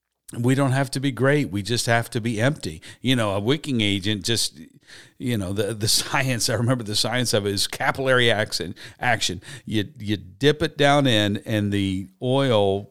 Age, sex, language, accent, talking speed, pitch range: 50-69, male, English, American, 195 wpm, 100-115 Hz